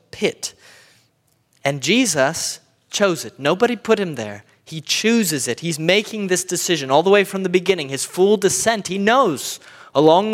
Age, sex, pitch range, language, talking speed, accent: 20-39, male, 130-190 Hz, English, 165 wpm, American